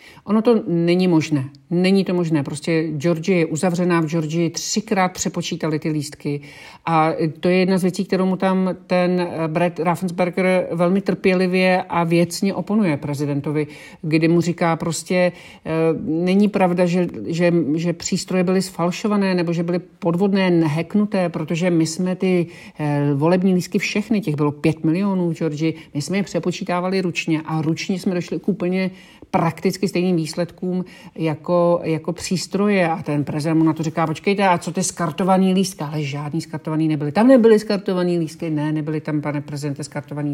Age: 50-69